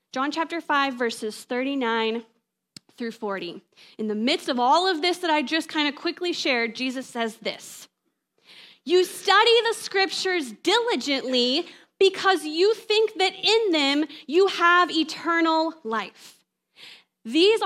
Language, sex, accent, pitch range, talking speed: English, female, American, 235-340 Hz, 135 wpm